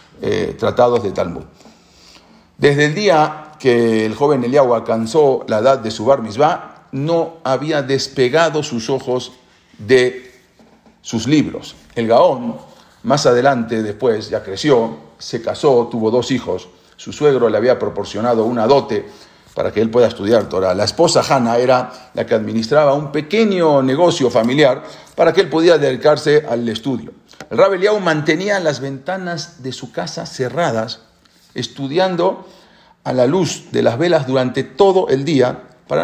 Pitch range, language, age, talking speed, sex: 125-175 Hz, English, 50-69, 150 wpm, male